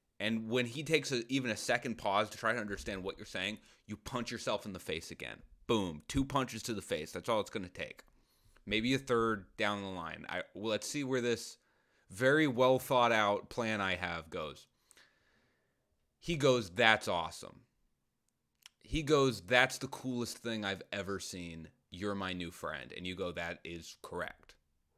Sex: male